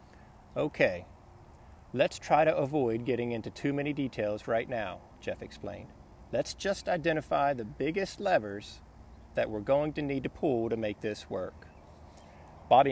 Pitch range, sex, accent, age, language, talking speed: 100-140 Hz, male, American, 40-59, English, 150 wpm